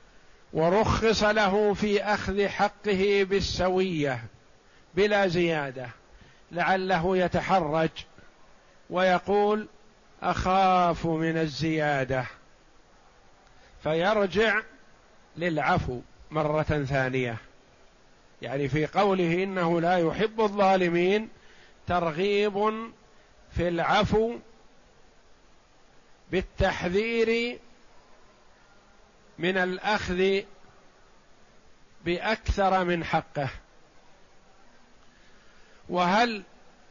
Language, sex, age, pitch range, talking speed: Arabic, male, 50-69, 160-195 Hz, 55 wpm